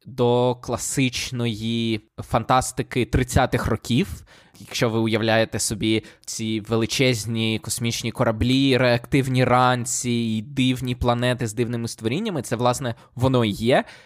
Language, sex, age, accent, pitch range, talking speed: Ukrainian, male, 20-39, native, 115-130 Hz, 105 wpm